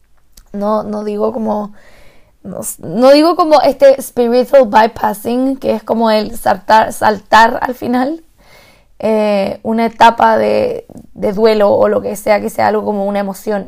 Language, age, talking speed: Spanish, 20-39, 135 wpm